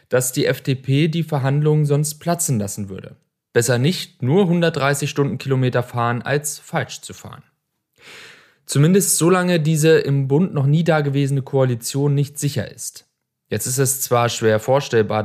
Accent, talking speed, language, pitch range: German, 145 wpm, German, 110-150 Hz